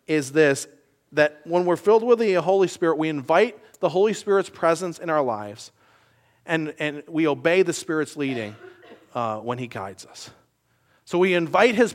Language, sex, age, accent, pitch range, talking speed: English, male, 40-59, American, 150-190 Hz, 175 wpm